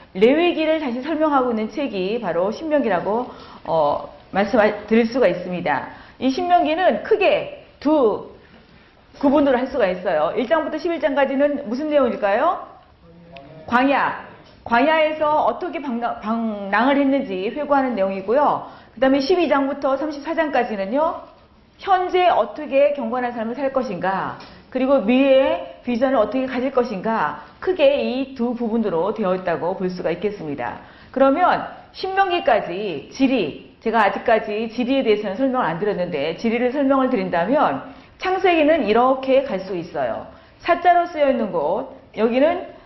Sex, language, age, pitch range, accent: female, Korean, 40-59, 225-305 Hz, native